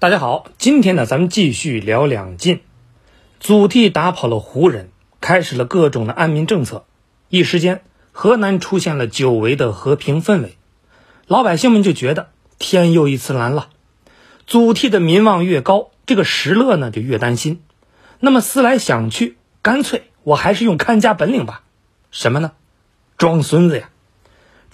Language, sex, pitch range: Chinese, male, 130-205 Hz